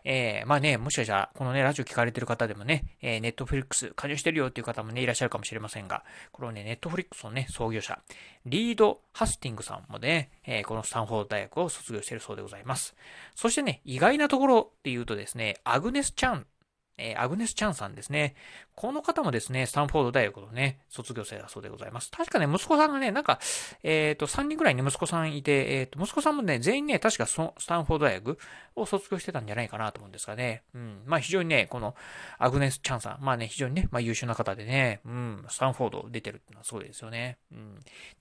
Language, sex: Japanese, male